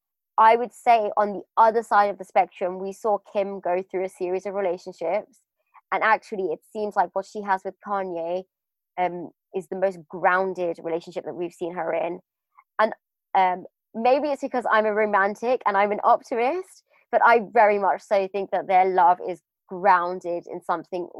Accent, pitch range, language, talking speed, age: British, 185-245 Hz, English, 185 wpm, 20-39